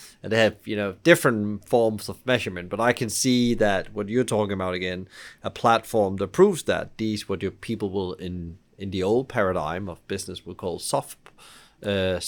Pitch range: 100-120 Hz